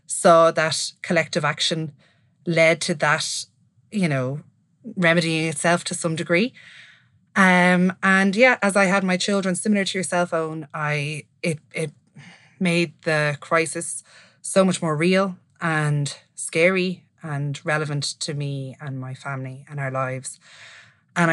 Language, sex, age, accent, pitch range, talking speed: English, female, 20-39, Irish, 140-170 Hz, 140 wpm